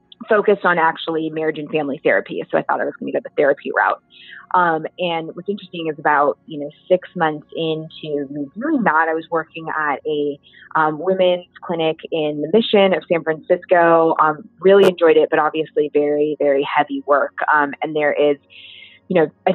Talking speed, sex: 190 wpm, female